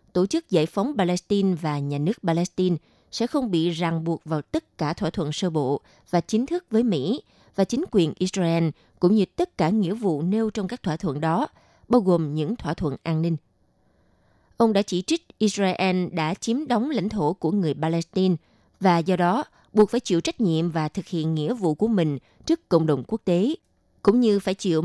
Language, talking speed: Vietnamese, 210 wpm